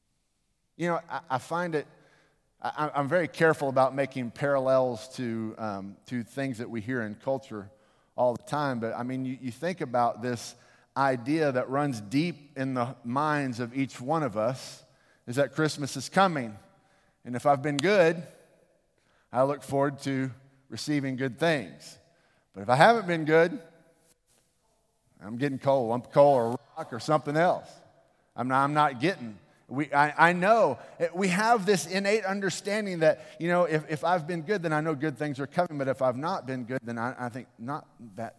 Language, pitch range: English, 125-160 Hz